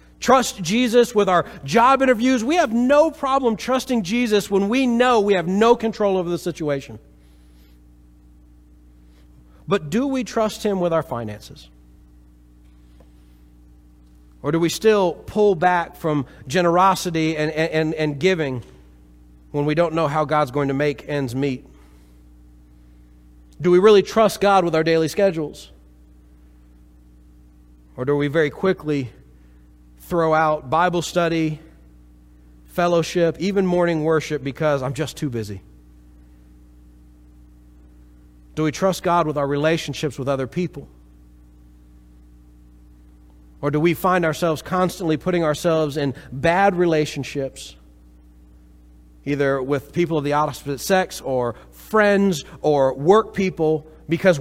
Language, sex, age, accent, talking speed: English, male, 40-59, American, 125 wpm